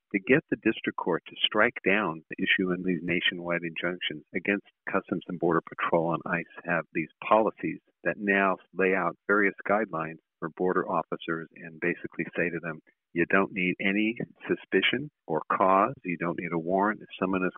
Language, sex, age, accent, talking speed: English, male, 50-69, American, 180 wpm